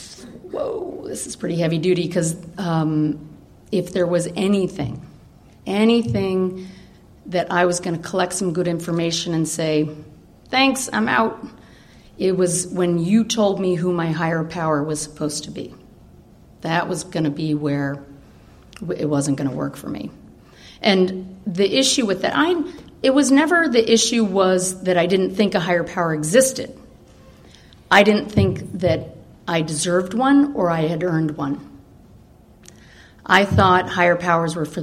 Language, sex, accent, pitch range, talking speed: English, female, American, 155-195 Hz, 160 wpm